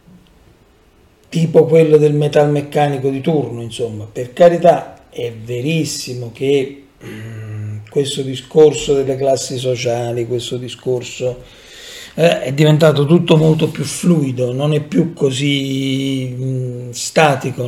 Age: 40-59